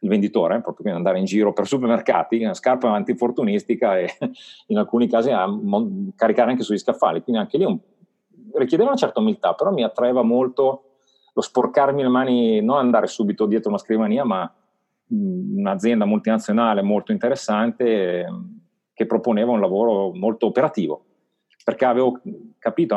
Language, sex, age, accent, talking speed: Italian, male, 40-59, native, 155 wpm